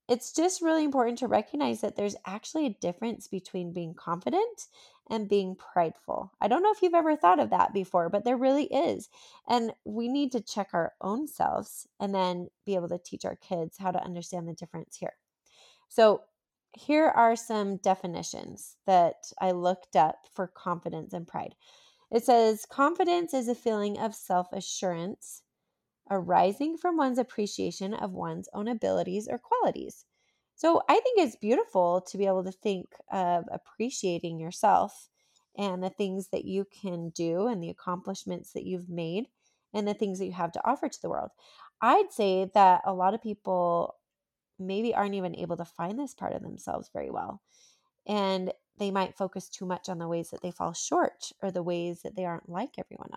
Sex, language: female, English